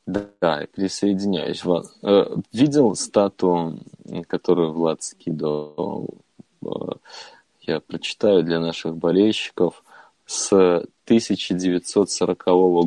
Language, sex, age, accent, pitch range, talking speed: Russian, male, 20-39, native, 85-100 Hz, 70 wpm